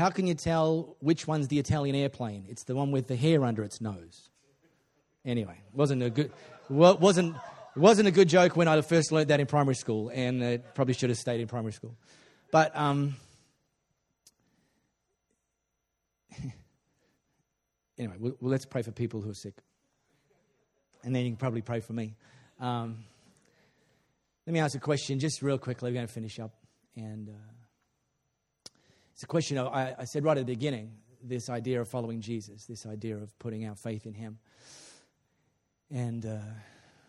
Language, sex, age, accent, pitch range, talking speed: English, male, 30-49, Australian, 115-140 Hz, 165 wpm